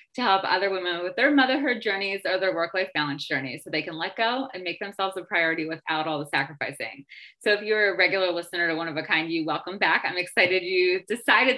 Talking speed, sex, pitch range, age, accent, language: 235 wpm, female, 180-225 Hz, 20-39, American, English